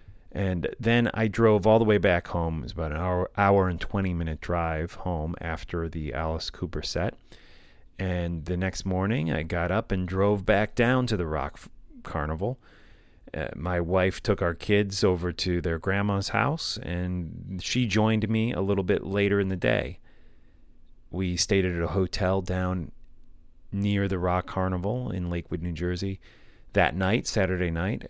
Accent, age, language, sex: American, 30-49, English, male